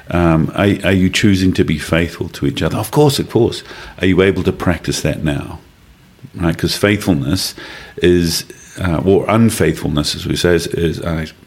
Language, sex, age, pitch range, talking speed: English, male, 50-69, 80-95 Hz, 170 wpm